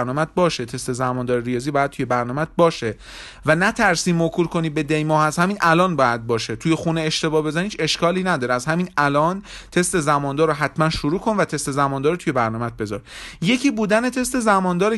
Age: 30-49